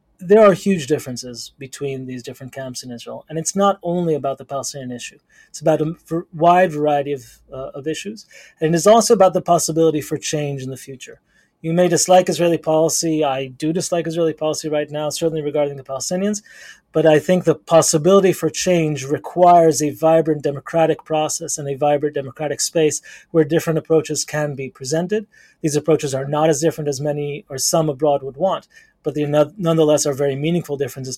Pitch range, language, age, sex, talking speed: 145-170 Hz, English, 30-49, male, 185 wpm